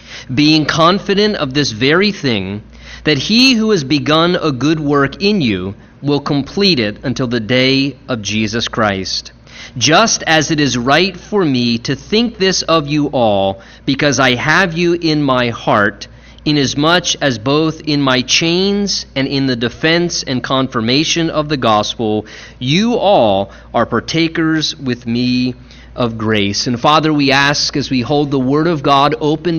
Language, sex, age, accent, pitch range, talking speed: English, male, 30-49, American, 125-160 Hz, 160 wpm